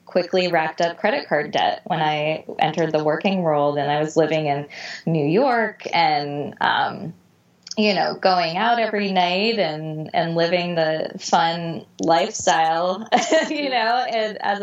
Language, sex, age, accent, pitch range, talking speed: English, female, 20-39, American, 160-205 Hz, 150 wpm